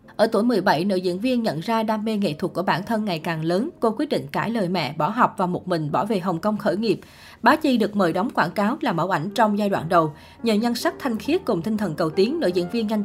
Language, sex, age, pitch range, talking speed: Vietnamese, female, 20-39, 180-235 Hz, 295 wpm